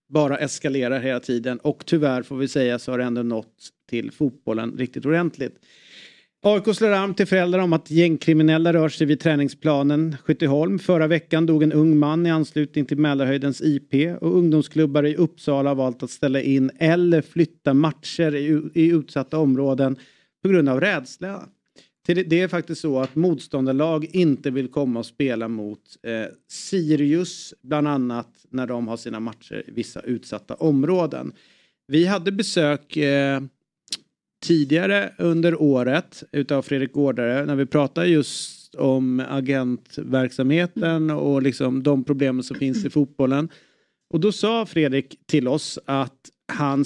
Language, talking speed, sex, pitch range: Swedish, 145 wpm, male, 135-160 Hz